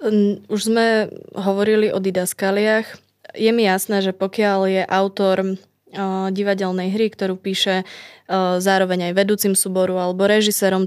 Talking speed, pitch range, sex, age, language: 135 wpm, 185-200 Hz, female, 20-39, Slovak